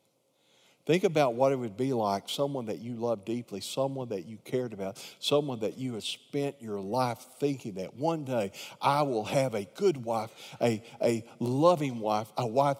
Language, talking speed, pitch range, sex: English, 190 wpm, 110-140 Hz, male